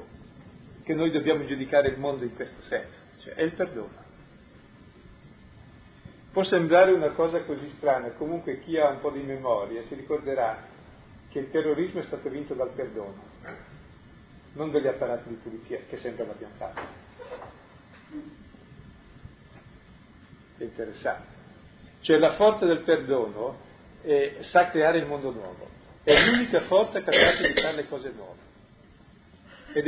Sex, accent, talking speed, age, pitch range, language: male, native, 135 wpm, 40-59, 140-185 Hz, Italian